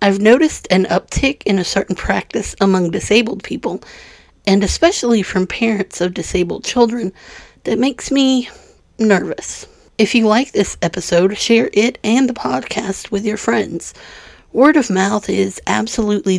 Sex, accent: female, American